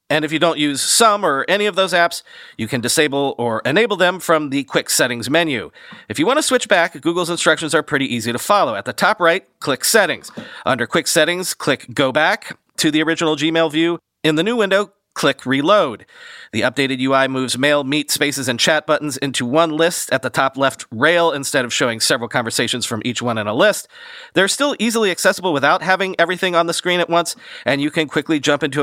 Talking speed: 220 wpm